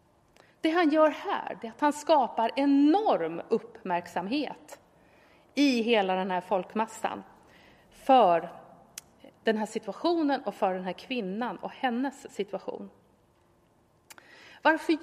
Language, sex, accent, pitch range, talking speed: Swedish, female, native, 195-280 Hz, 110 wpm